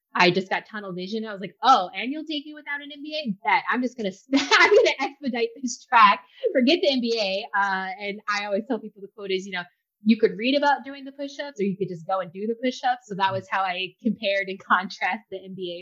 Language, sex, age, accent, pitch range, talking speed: English, female, 20-39, American, 185-250 Hz, 245 wpm